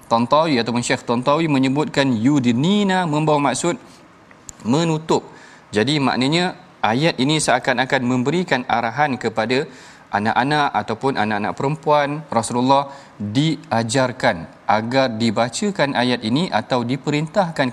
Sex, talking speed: male, 100 wpm